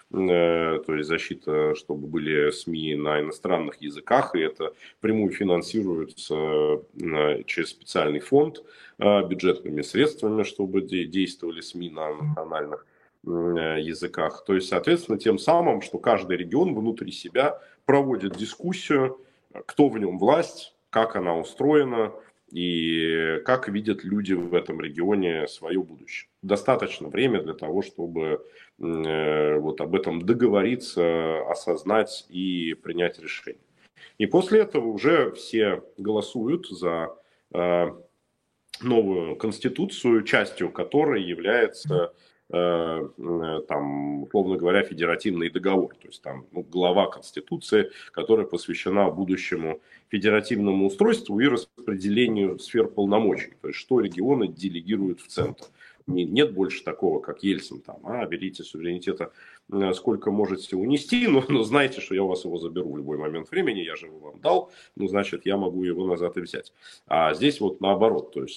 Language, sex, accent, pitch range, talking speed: Russian, male, native, 80-110 Hz, 130 wpm